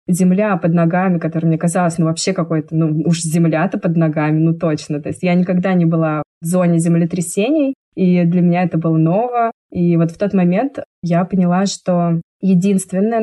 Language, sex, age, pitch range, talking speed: Russian, female, 20-39, 170-200 Hz, 185 wpm